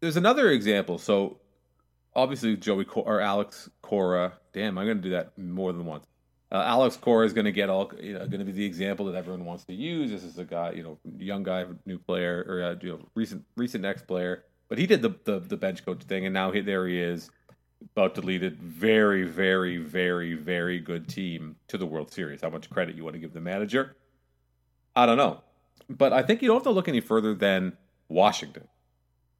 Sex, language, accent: male, English, American